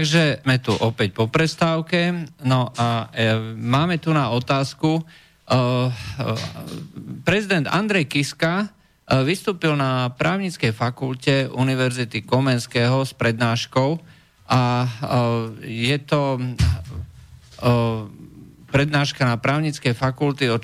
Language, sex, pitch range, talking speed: Slovak, male, 115-140 Hz, 105 wpm